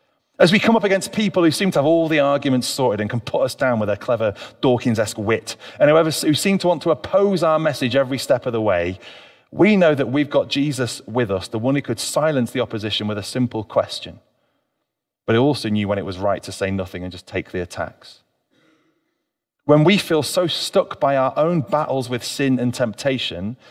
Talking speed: 220 wpm